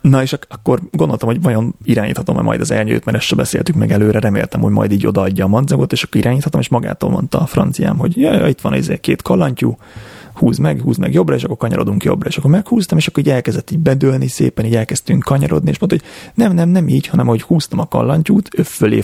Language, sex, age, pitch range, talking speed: Hungarian, male, 30-49, 105-150 Hz, 235 wpm